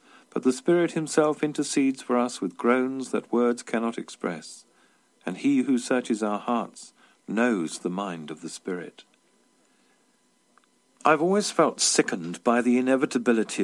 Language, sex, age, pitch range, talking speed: English, male, 50-69, 100-145 Hz, 140 wpm